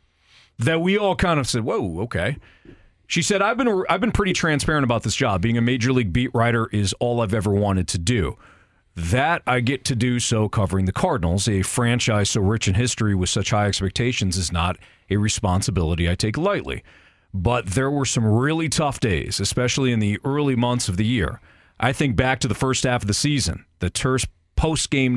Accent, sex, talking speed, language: American, male, 205 wpm, English